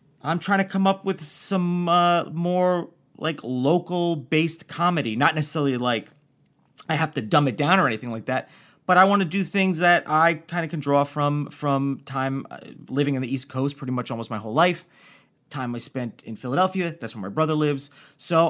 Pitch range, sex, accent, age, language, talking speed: 135-185 Hz, male, American, 30-49, English, 205 wpm